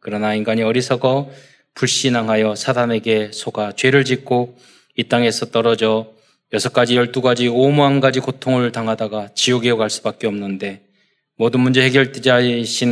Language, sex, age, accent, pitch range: Korean, male, 20-39, native, 110-135 Hz